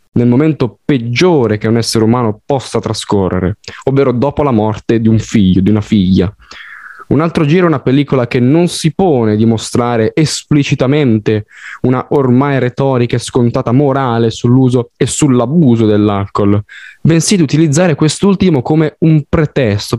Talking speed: 145 wpm